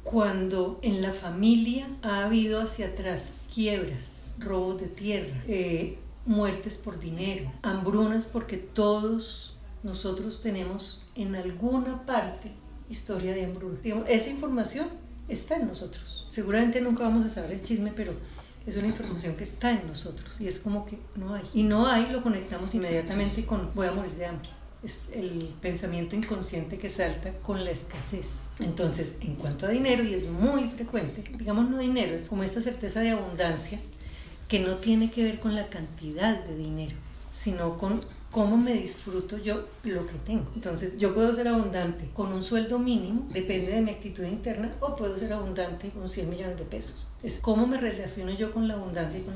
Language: Spanish